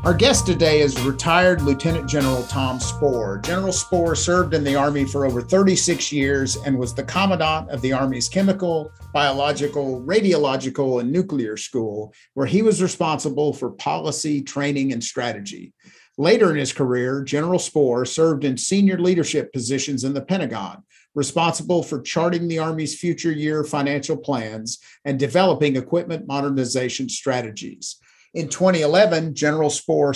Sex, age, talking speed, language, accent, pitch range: male, 50-69, 145 wpm, English, American, 130-165 Hz